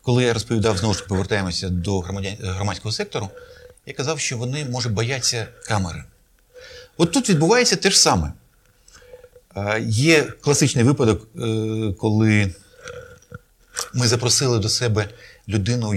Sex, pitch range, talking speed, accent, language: male, 110-175 Hz, 115 wpm, native, Ukrainian